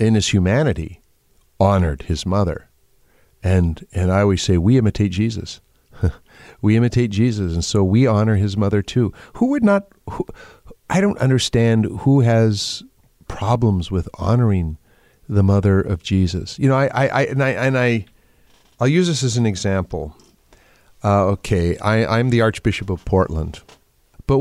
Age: 50-69